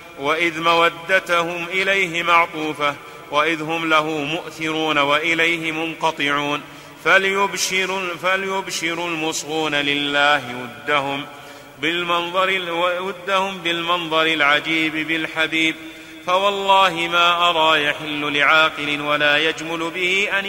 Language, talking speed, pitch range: Arabic, 80 wpm, 150-175 Hz